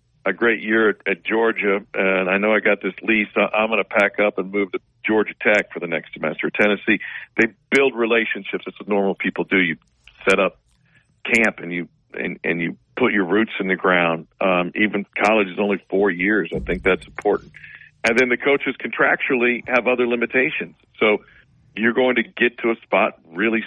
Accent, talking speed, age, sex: American, 200 wpm, 50-69, male